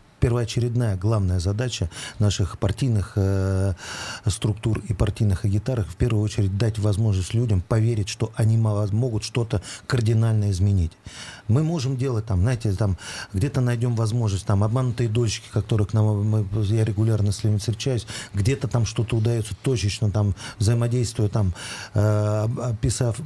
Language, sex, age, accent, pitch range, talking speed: Russian, male, 40-59, native, 105-120 Hz, 135 wpm